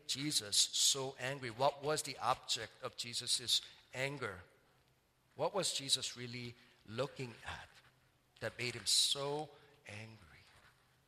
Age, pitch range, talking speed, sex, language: 50-69, 120-145 Hz, 115 wpm, male, English